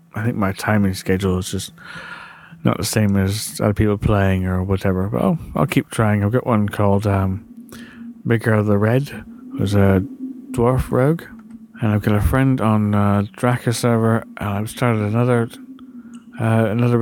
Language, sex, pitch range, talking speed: English, male, 105-125 Hz, 175 wpm